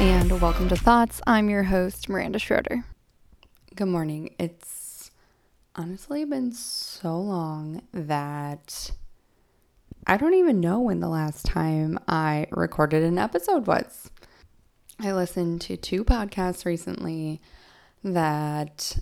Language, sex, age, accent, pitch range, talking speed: English, female, 10-29, American, 160-200 Hz, 115 wpm